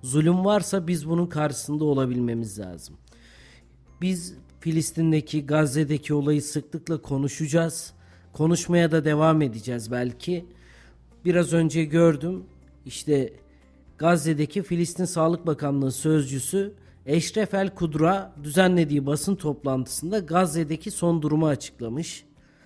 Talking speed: 95 wpm